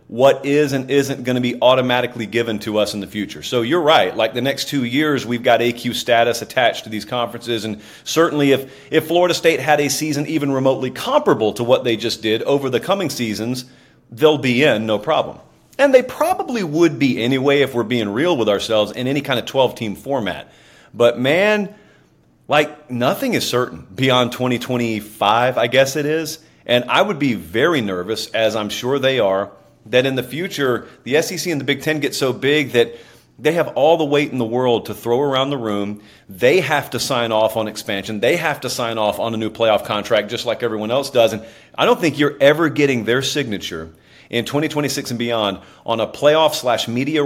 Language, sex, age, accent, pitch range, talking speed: English, male, 40-59, American, 115-145 Hz, 210 wpm